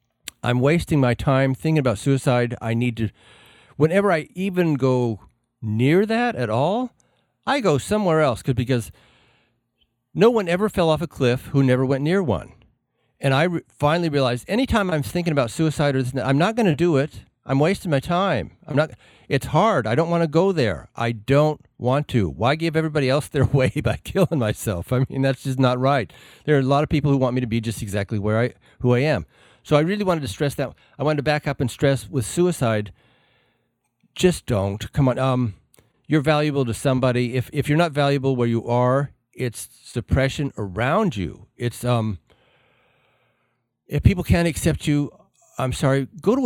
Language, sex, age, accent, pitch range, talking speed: English, male, 50-69, American, 120-155 Hz, 190 wpm